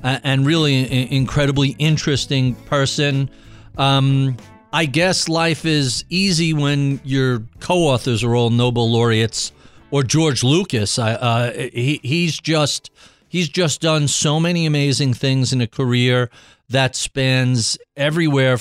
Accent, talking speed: American, 130 wpm